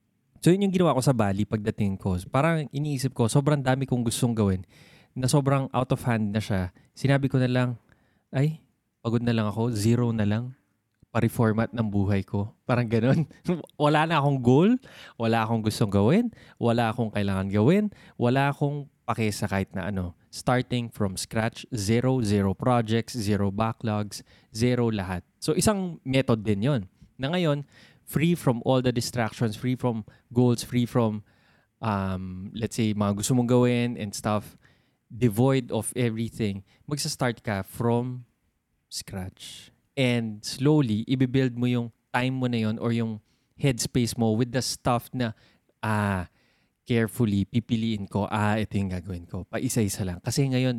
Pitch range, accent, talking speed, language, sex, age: 105-130 Hz, native, 160 wpm, Filipino, male, 20-39